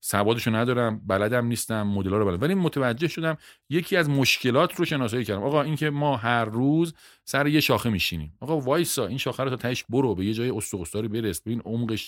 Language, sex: Persian, male